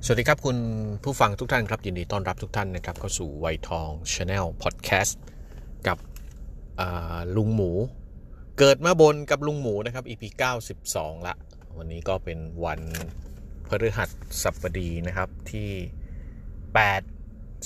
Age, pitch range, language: 30-49, 85-115 Hz, Thai